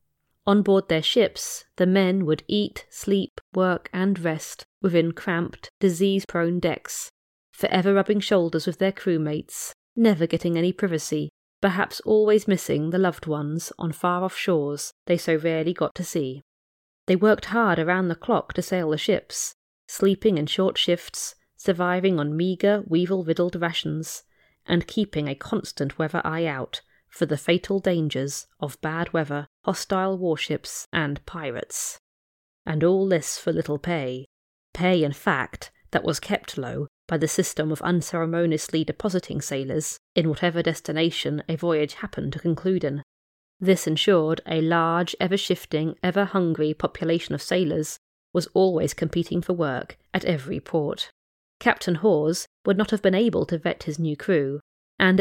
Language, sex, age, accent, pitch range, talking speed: English, female, 30-49, British, 155-190 Hz, 150 wpm